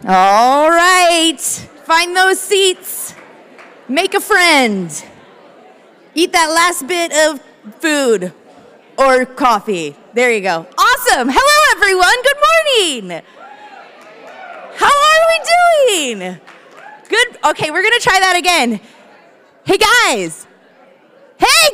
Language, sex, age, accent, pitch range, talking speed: English, female, 20-39, American, 245-365 Hz, 110 wpm